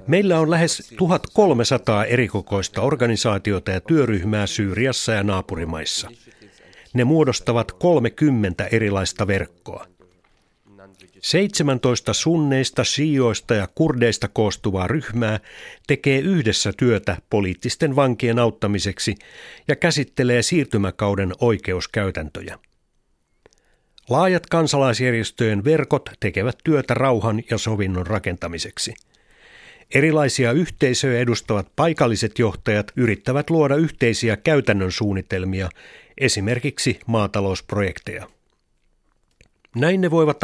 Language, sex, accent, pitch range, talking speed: Finnish, male, native, 100-140 Hz, 85 wpm